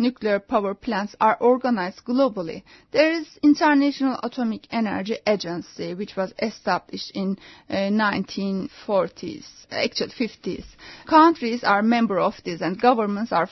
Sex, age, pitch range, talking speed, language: female, 30-49, 215-285 Hz, 125 wpm, English